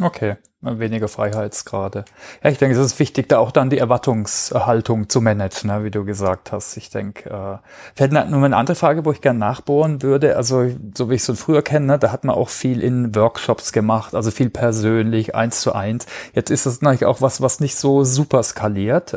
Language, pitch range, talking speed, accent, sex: German, 115-140 Hz, 215 wpm, German, male